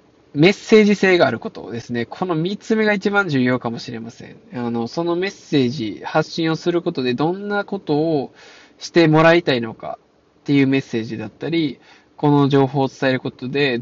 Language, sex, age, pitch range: Japanese, male, 20-39, 120-170 Hz